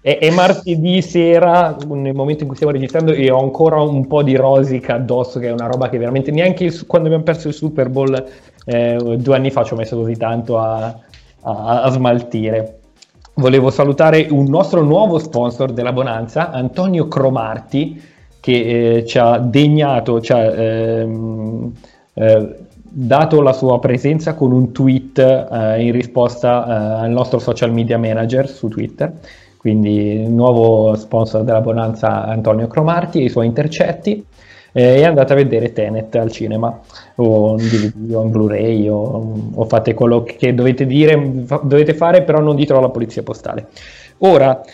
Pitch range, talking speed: 115-145 Hz, 165 wpm